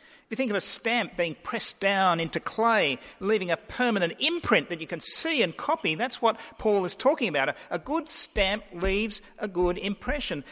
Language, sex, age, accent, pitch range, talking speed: English, male, 40-59, Australian, 175-235 Hz, 195 wpm